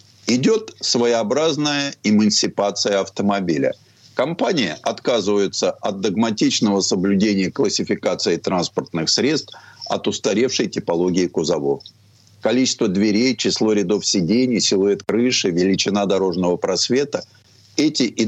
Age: 50-69